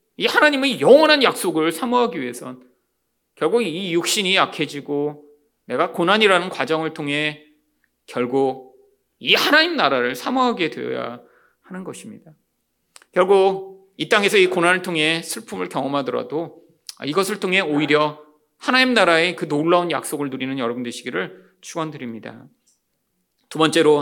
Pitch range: 140-220 Hz